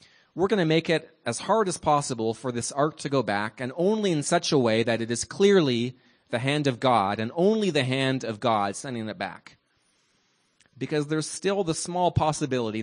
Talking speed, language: 205 wpm, English